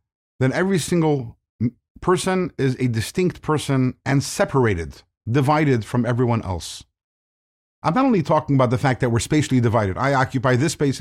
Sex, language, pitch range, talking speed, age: male, English, 120-160 Hz, 160 wpm, 50-69